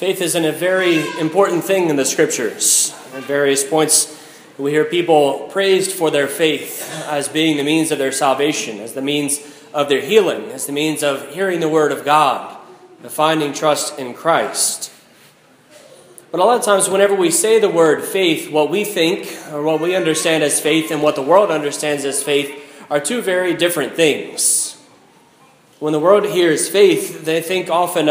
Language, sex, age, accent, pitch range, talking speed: English, male, 20-39, American, 150-190 Hz, 185 wpm